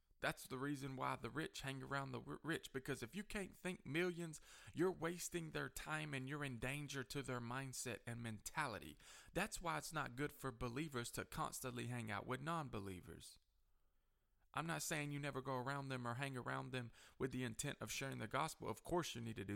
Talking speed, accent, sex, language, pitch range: 205 wpm, American, male, English, 110-140 Hz